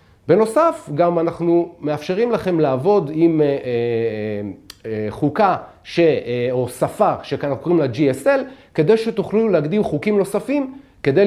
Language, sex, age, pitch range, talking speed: Hebrew, male, 40-59, 130-200 Hz, 135 wpm